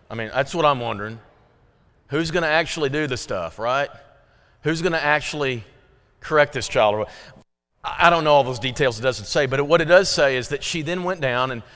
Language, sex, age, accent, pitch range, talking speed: English, male, 40-59, American, 125-160 Hz, 215 wpm